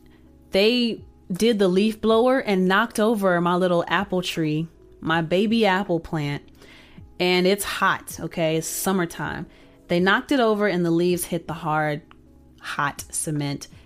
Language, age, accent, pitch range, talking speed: English, 30-49, American, 155-205 Hz, 145 wpm